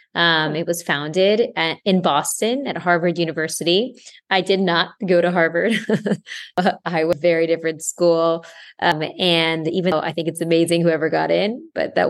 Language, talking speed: English, 180 wpm